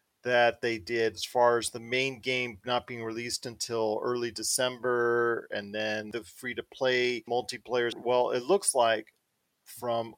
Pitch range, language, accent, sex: 115-140 Hz, English, American, male